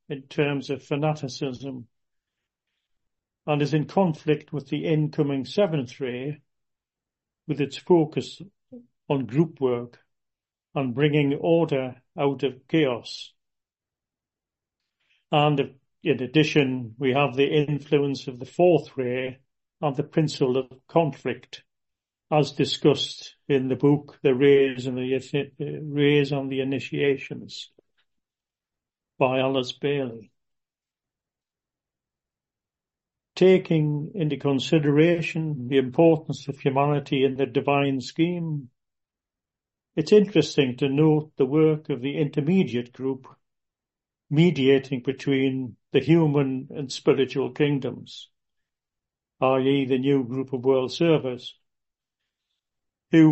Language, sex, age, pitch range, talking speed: English, male, 50-69, 130-150 Hz, 105 wpm